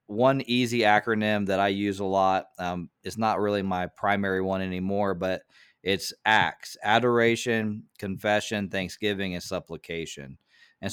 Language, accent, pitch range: English, American, 95-115 Hz